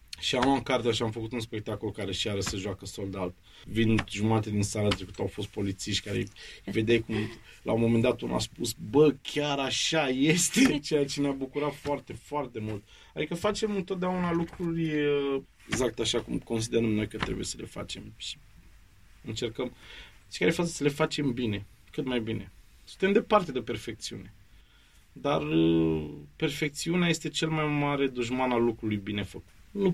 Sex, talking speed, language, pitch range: male, 170 wpm, Romanian, 105-140 Hz